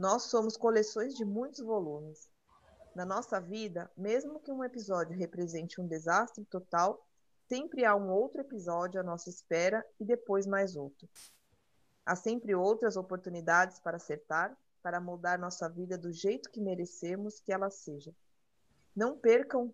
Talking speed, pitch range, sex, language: 145 wpm, 180-220 Hz, female, Portuguese